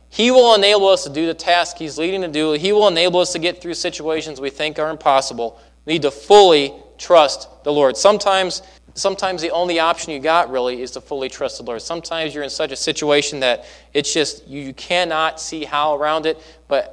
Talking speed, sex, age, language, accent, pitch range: 215 wpm, male, 20-39, English, American, 140-180 Hz